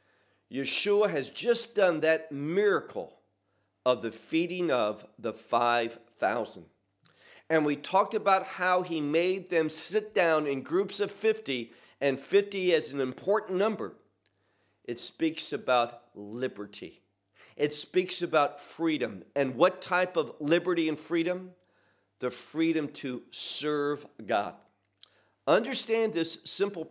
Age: 50-69